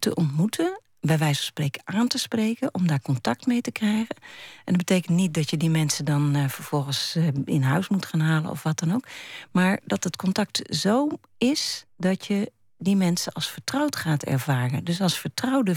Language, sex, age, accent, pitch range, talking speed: Dutch, female, 40-59, Dutch, 155-225 Hz, 200 wpm